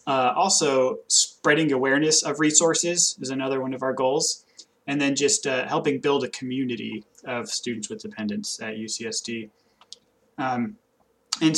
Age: 20-39